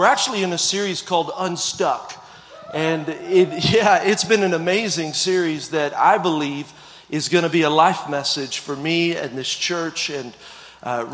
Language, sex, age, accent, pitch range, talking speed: English, male, 40-59, American, 155-180 Hz, 165 wpm